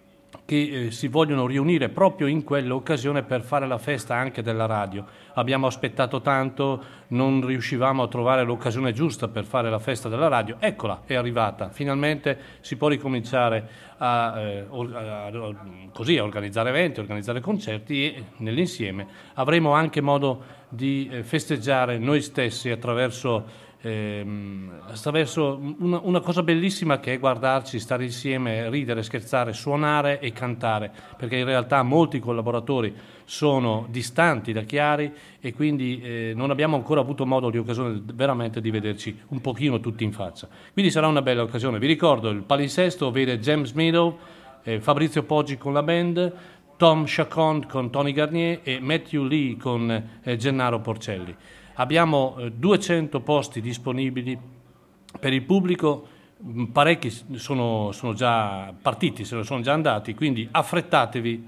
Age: 40-59